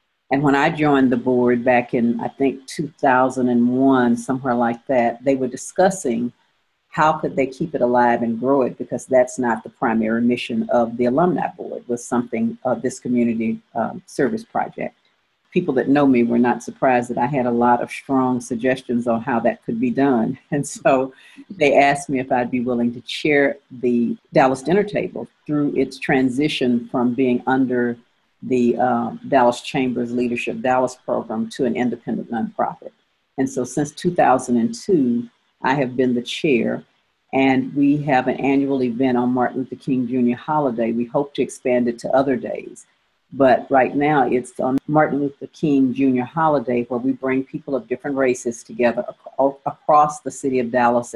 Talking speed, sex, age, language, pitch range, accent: 175 wpm, female, 50-69, English, 120-140 Hz, American